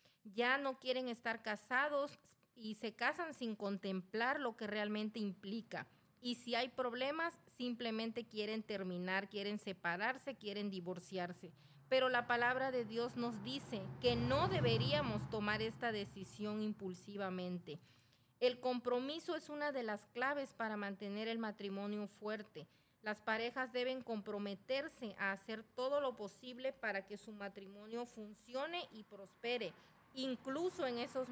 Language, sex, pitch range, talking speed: Spanish, female, 205-255 Hz, 135 wpm